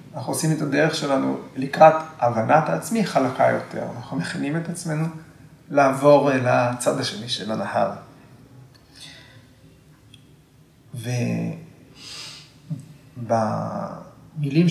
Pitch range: 130-155 Hz